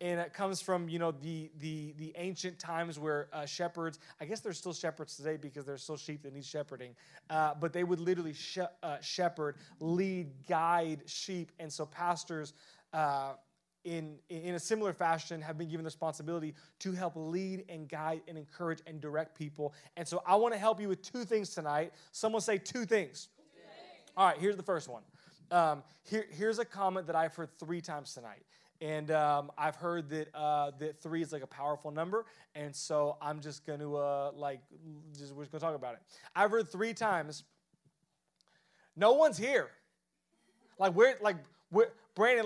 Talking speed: 190 wpm